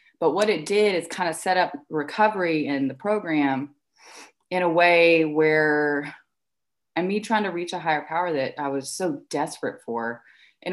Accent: American